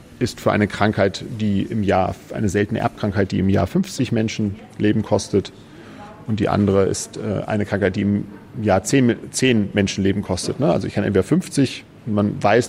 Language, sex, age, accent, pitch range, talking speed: German, male, 40-59, German, 105-130 Hz, 165 wpm